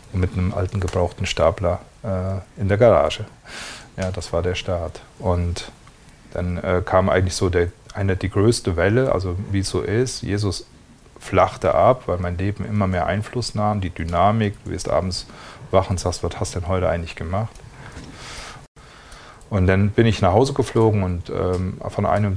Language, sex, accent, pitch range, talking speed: German, male, German, 90-105 Hz, 175 wpm